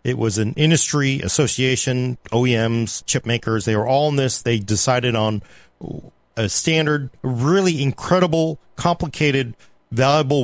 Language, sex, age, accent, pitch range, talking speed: English, male, 40-59, American, 110-145 Hz, 125 wpm